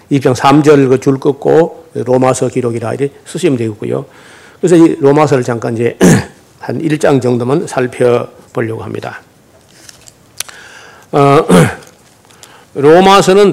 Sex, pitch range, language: male, 130-170 Hz, Korean